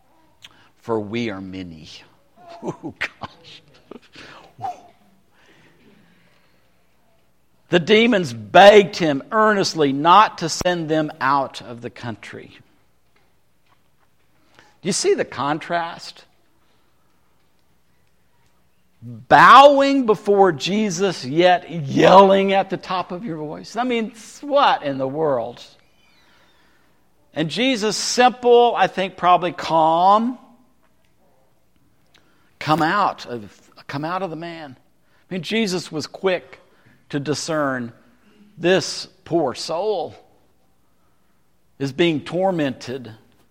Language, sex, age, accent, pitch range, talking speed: English, male, 60-79, American, 125-205 Hz, 95 wpm